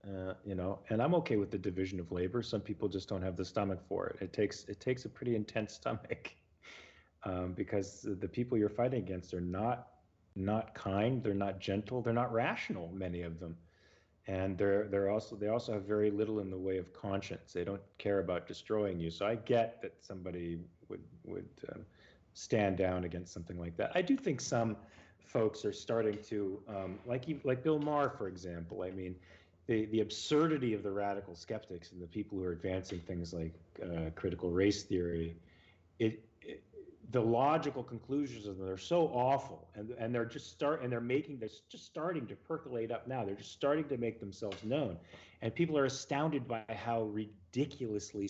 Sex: male